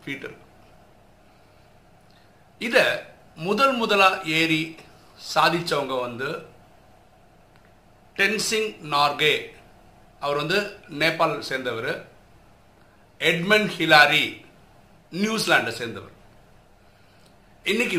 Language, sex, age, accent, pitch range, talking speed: Tamil, male, 60-79, native, 145-205 Hz, 45 wpm